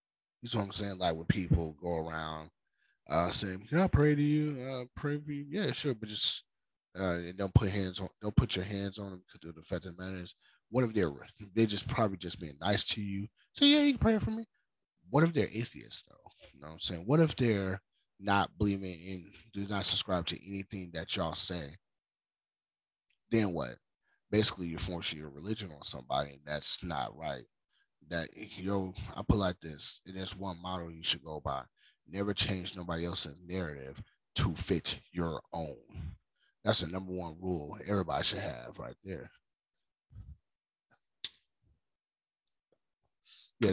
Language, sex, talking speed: English, male, 180 wpm